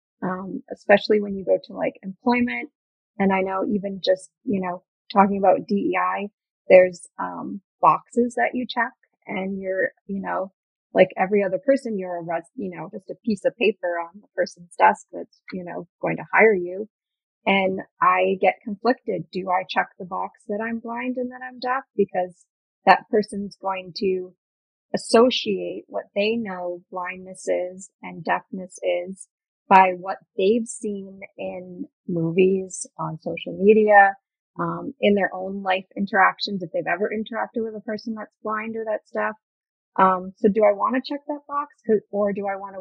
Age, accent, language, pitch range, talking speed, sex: 30-49, American, English, 185-230 Hz, 175 wpm, female